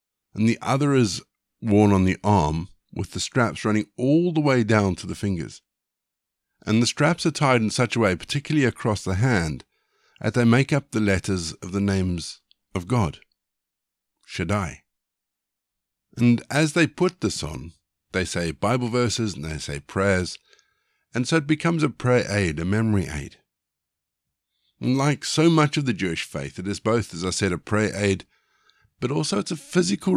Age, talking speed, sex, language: 50-69, 180 wpm, male, English